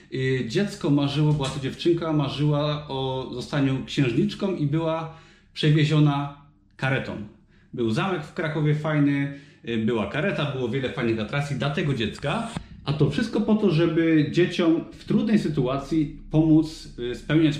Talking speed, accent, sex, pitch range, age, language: 135 wpm, native, male, 140-175 Hz, 30-49, Polish